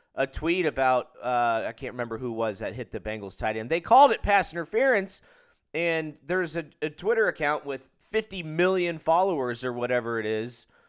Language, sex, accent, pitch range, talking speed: English, male, American, 120-170 Hz, 185 wpm